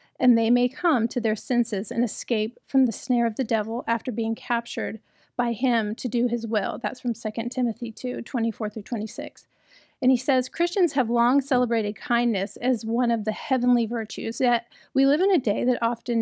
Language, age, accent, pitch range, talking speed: English, 40-59, American, 225-260 Hz, 200 wpm